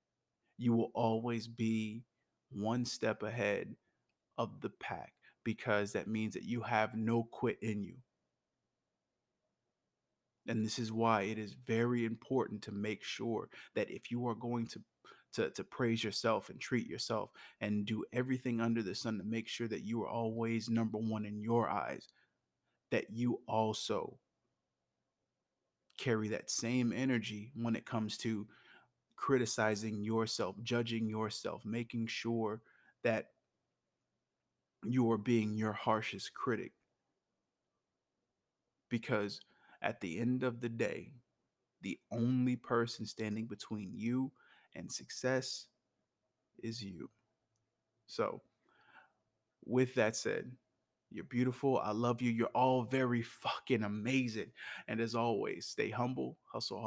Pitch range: 110-120 Hz